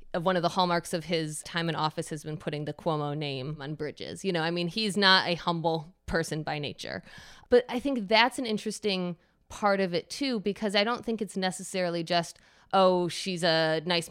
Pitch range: 160-210 Hz